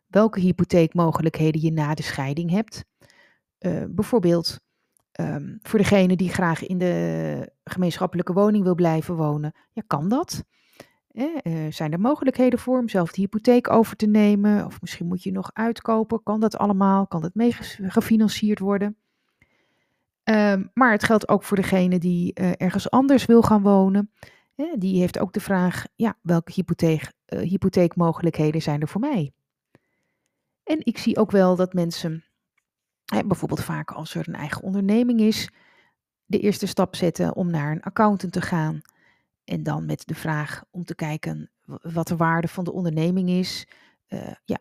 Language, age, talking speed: Dutch, 30-49, 155 wpm